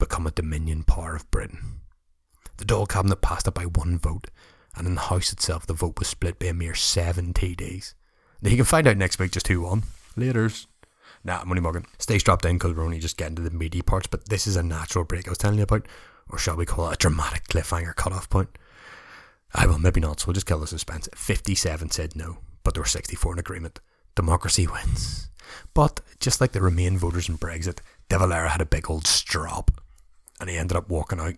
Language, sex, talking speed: English, male, 225 wpm